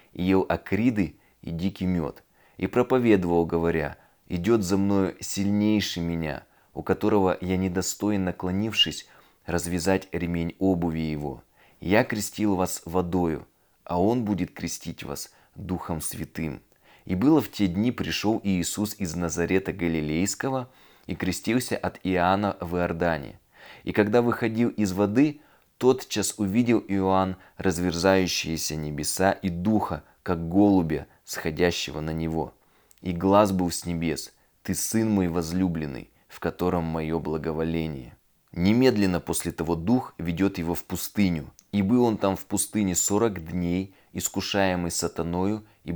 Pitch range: 85-100 Hz